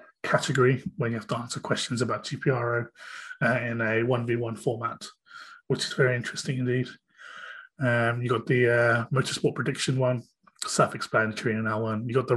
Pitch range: 115-145 Hz